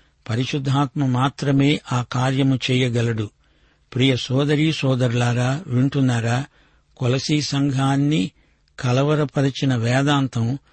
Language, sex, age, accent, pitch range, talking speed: Telugu, male, 60-79, native, 125-145 Hz, 75 wpm